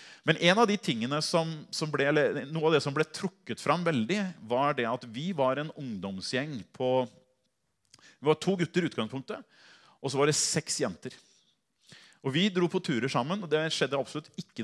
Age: 30-49